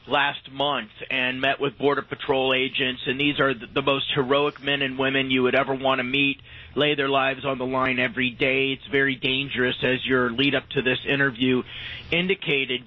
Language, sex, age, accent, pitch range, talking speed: English, male, 30-49, American, 130-150 Hz, 190 wpm